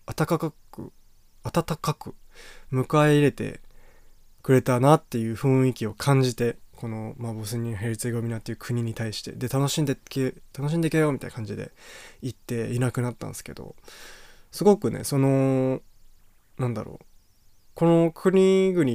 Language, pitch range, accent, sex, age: Japanese, 115-155 Hz, native, male, 20-39